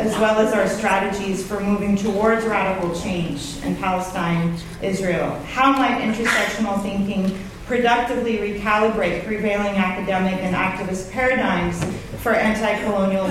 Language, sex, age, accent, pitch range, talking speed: English, female, 40-59, American, 185-225 Hz, 115 wpm